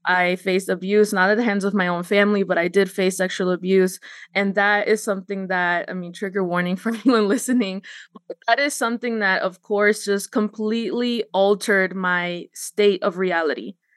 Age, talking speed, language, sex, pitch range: 20-39, 185 wpm, English, female, 190-220 Hz